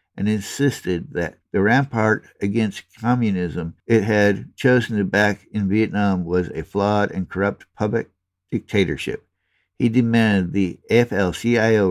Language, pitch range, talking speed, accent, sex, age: English, 90-110 Hz, 125 wpm, American, male, 60-79